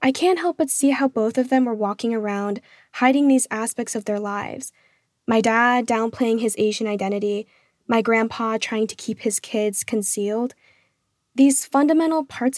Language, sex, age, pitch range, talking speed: English, female, 10-29, 200-245 Hz, 165 wpm